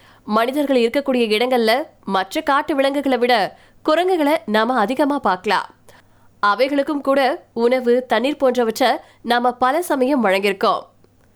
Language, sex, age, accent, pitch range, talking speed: Tamil, female, 20-39, native, 230-290 Hz, 105 wpm